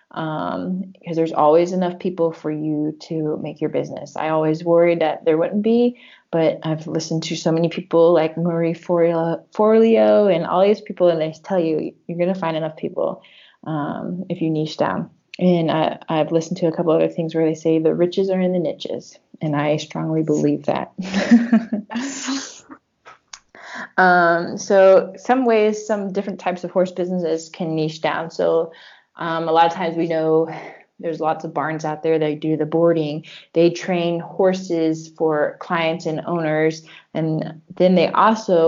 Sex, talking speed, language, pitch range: female, 175 wpm, English, 160-185 Hz